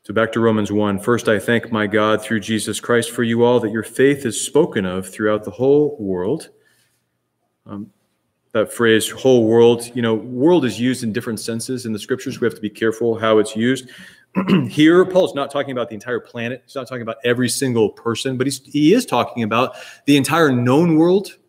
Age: 30-49